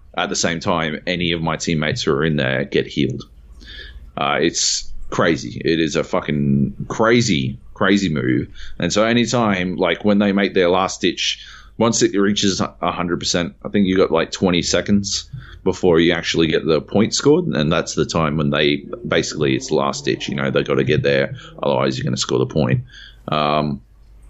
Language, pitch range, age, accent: English, 70-105 Hz, 30-49, Australian